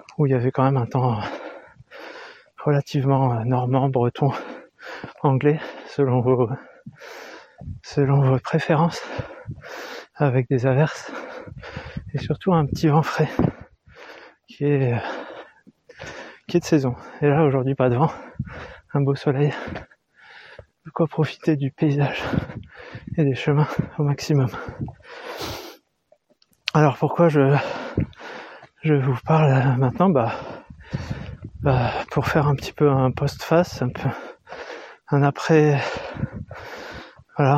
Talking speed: 110 wpm